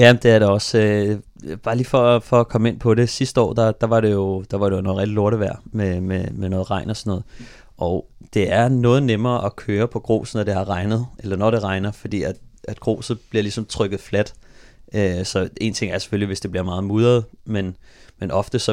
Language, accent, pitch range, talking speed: Danish, native, 100-115 Hz, 235 wpm